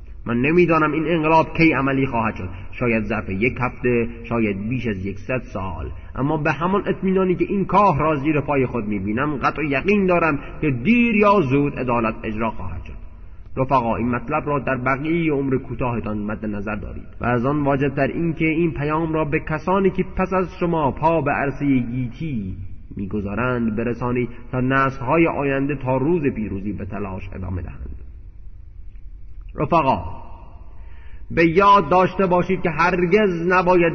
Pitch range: 110-165 Hz